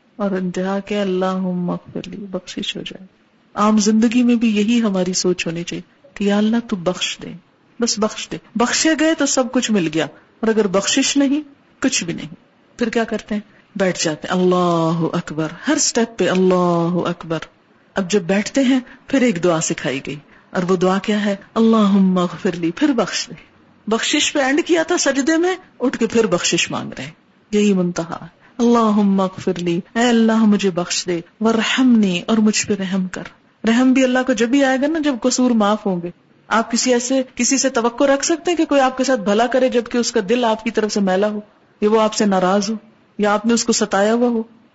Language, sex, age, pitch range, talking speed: Urdu, female, 50-69, 190-240 Hz, 205 wpm